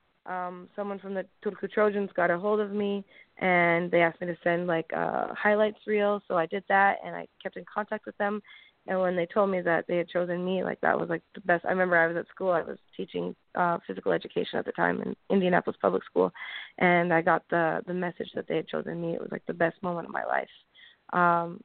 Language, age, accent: English, 20-39, American